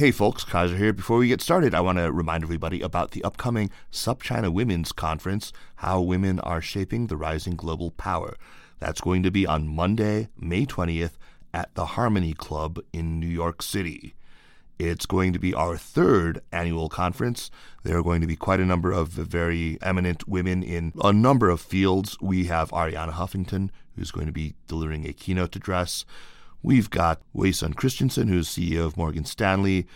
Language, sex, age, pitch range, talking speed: English, male, 30-49, 80-95 Hz, 180 wpm